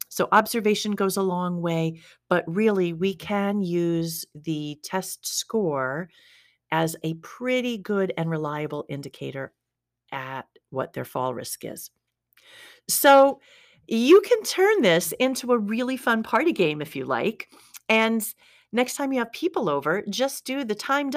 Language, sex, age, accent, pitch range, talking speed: English, female, 40-59, American, 170-235 Hz, 145 wpm